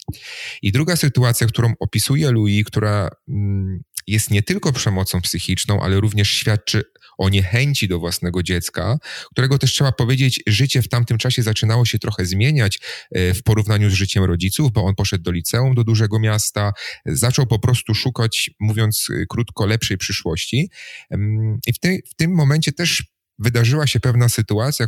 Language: Polish